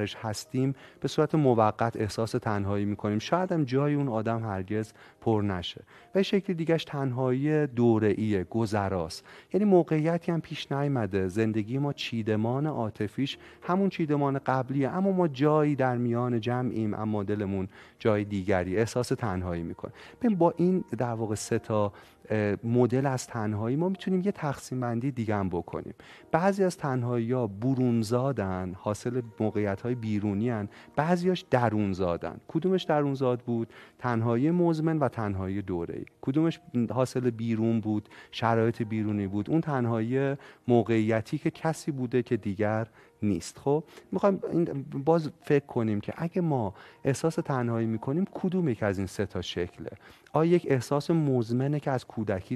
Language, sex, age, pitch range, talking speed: Persian, male, 30-49, 105-145 Hz, 145 wpm